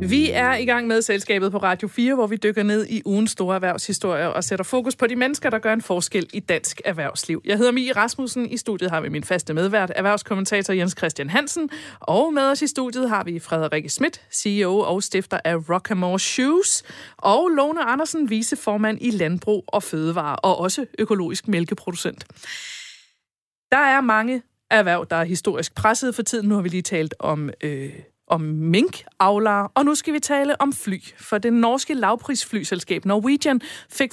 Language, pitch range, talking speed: Danish, 185-240 Hz, 185 wpm